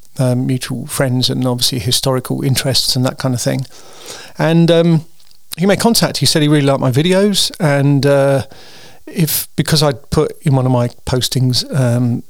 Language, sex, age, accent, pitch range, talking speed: English, male, 40-59, British, 130-160 Hz, 175 wpm